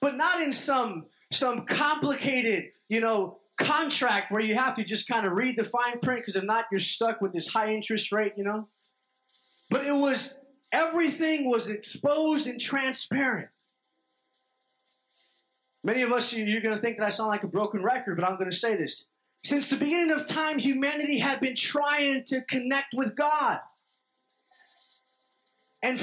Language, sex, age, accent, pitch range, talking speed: English, male, 30-49, American, 215-270 Hz, 170 wpm